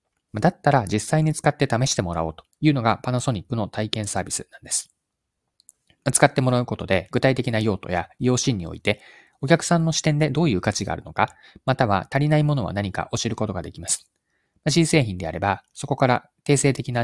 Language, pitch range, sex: Japanese, 100-155 Hz, male